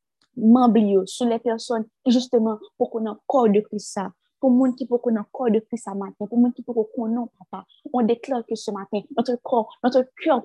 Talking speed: 220 wpm